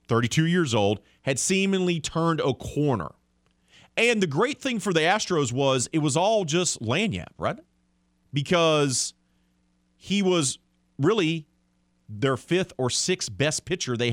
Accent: American